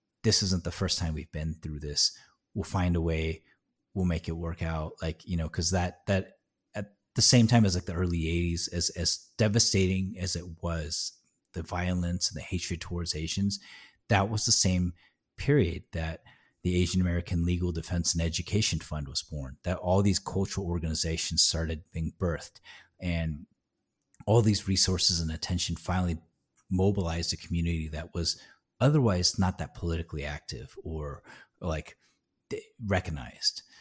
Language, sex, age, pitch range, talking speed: English, male, 30-49, 80-95 Hz, 160 wpm